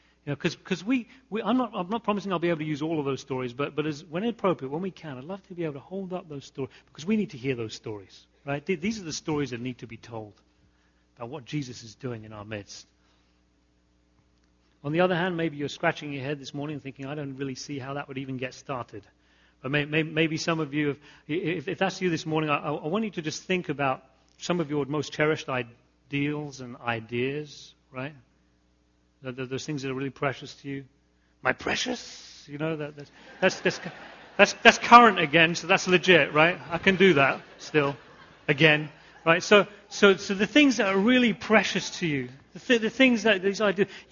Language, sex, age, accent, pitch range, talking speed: English, male, 40-59, British, 135-190 Hz, 220 wpm